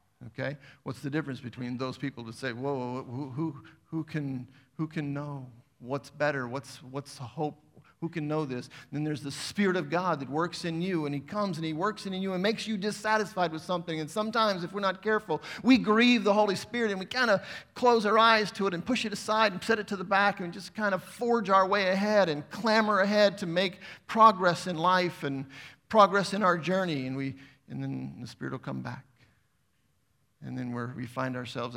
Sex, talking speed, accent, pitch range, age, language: male, 230 wpm, American, 125-185 Hz, 50-69, English